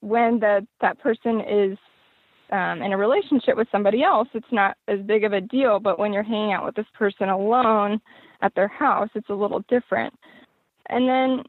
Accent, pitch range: American, 205-245 Hz